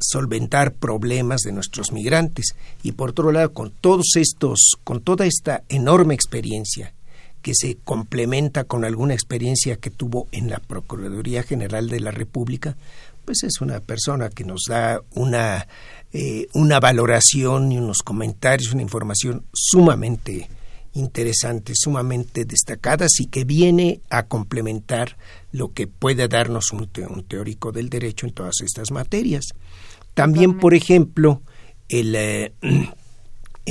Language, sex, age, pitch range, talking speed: Spanish, male, 50-69, 110-135 Hz, 130 wpm